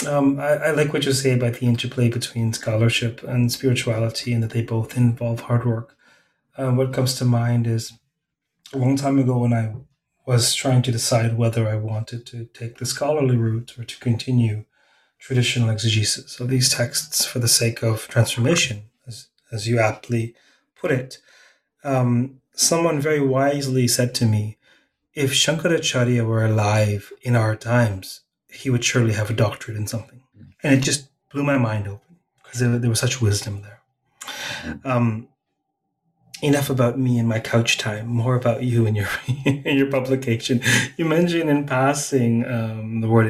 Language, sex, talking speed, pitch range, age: English, male, 170 wpm, 115-135 Hz, 30-49